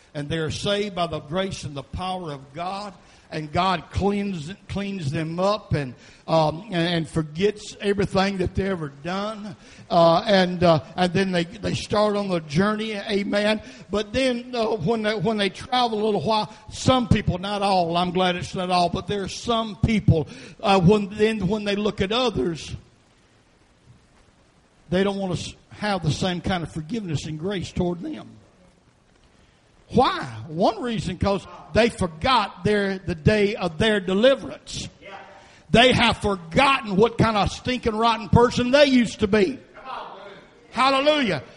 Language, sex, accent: English, male, American